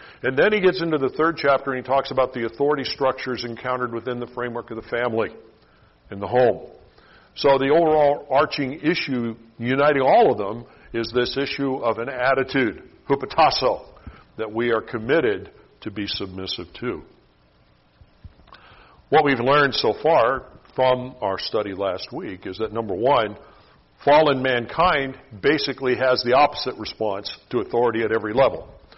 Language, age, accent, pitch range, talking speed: English, 50-69, American, 110-140 Hz, 155 wpm